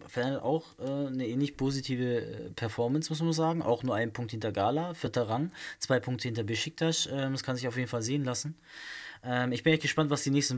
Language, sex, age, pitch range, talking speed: German, male, 20-39, 125-150 Hz, 215 wpm